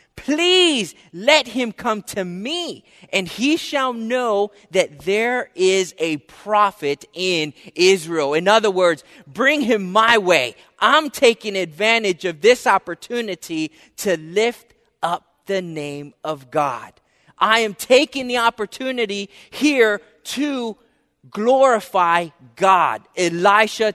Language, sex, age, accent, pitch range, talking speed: English, male, 30-49, American, 175-225 Hz, 120 wpm